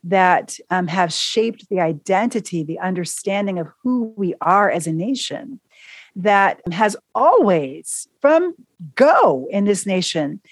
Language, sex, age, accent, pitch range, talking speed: English, female, 40-59, American, 170-220 Hz, 130 wpm